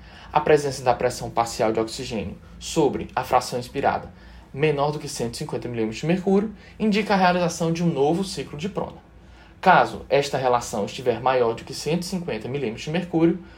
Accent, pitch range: Brazilian, 125-180 Hz